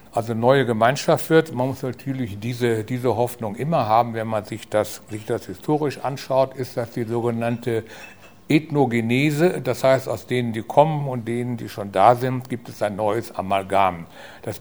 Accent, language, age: German, German, 60-79